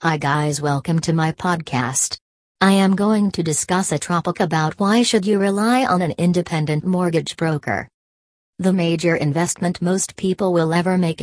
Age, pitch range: 40-59, 150-180 Hz